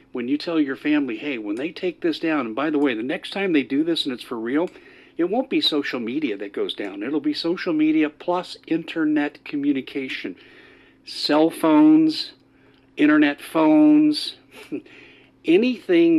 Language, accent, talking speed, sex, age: English, American, 165 wpm, male, 50-69